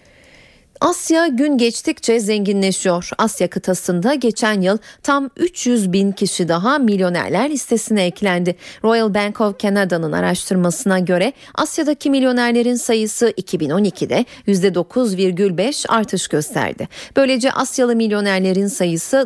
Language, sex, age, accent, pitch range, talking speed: Turkish, female, 40-59, native, 185-260 Hz, 105 wpm